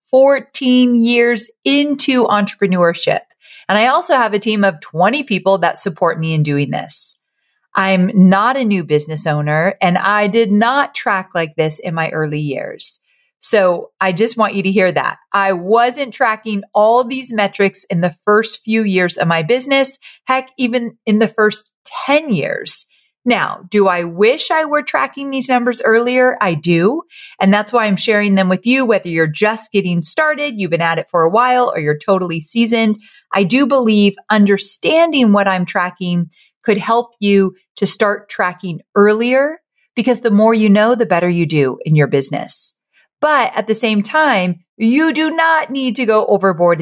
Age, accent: 30-49, American